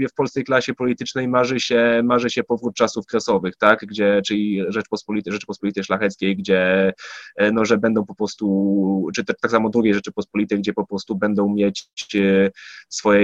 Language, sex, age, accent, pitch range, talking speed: Polish, male, 20-39, native, 100-115 Hz, 155 wpm